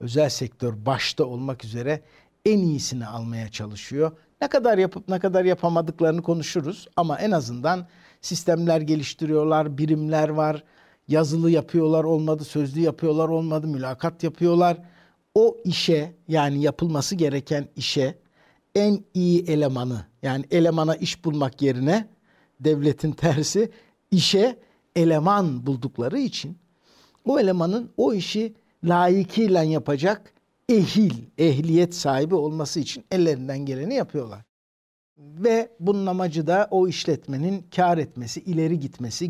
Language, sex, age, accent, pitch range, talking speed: Turkish, male, 60-79, native, 145-180 Hz, 115 wpm